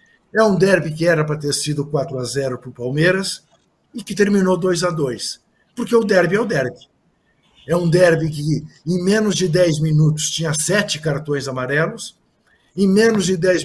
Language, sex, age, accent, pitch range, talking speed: Portuguese, male, 50-69, Brazilian, 155-205 Hz, 175 wpm